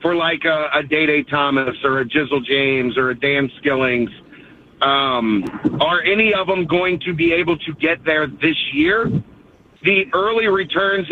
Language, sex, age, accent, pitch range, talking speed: English, male, 50-69, American, 150-185 Hz, 165 wpm